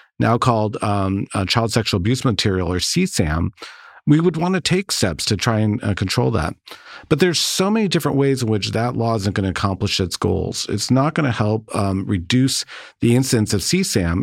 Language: English